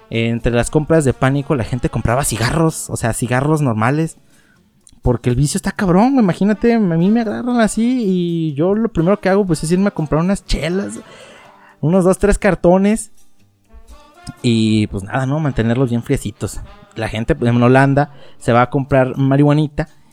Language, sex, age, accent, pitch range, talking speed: Spanish, male, 30-49, Mexican, 120-160 Hz, 175 wpm